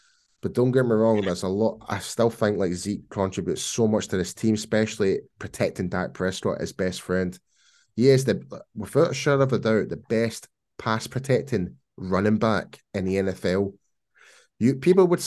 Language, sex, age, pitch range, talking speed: English, male, 10-29, 100-135 Hz, 190 wpm